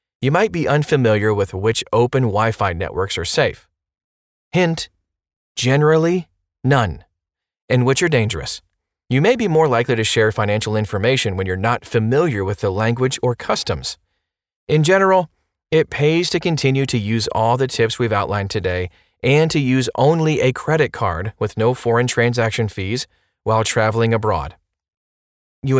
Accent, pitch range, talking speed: American, 105-140 Hz, 155 wpm